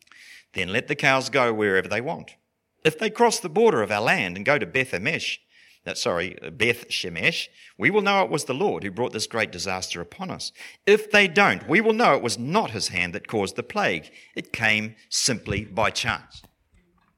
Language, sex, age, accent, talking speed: English, male, 50-69, Australian, 190 wpm